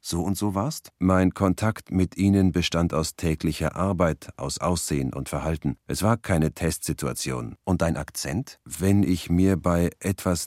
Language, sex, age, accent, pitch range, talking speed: German, male, 40-59, German, 80-95 Hz, 160 wpm